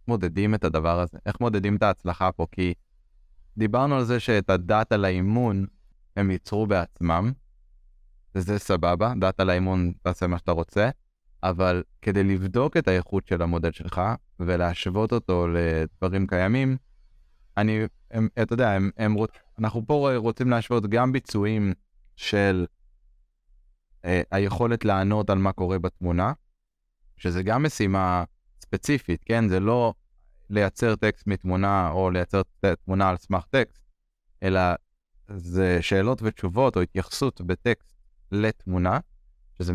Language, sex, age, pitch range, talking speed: Hebrew, male, 20-39, 90-110 Hz, 125 wpm